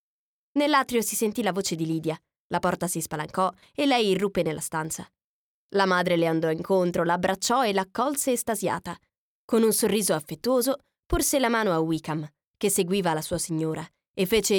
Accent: native